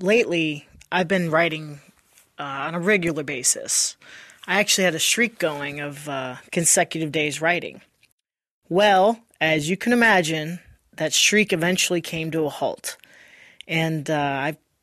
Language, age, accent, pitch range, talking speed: English, 30-49, American, 155-190 Hz, 140 wpm